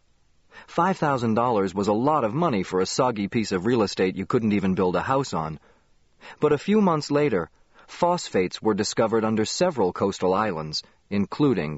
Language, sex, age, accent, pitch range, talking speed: English, male, 40-59, American, 90-125 Hz, 165 wpm